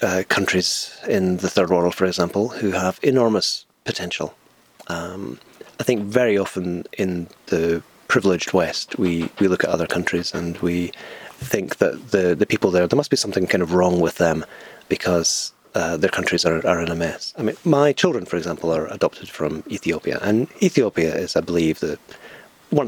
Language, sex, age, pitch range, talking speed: English, male, 30-49, 85-125 Hz, 185 wpm